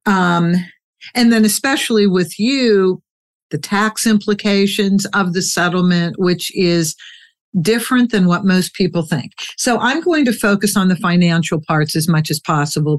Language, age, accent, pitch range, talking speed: English, 50-69, American, 170-215 Hz, 150 wpm